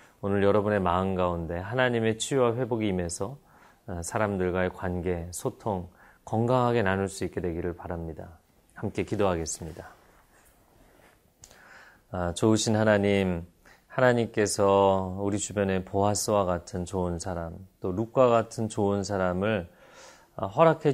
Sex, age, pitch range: male, 30-49, 90-110 Hz